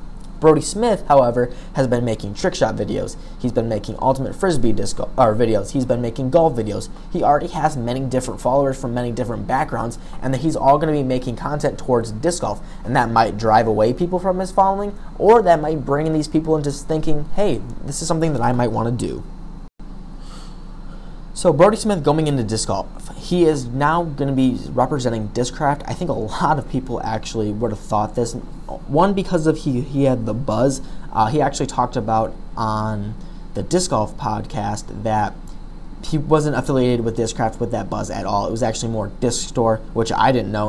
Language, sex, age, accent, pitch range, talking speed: English, male, 20-39, American, 115-150 Hz, 205 wpm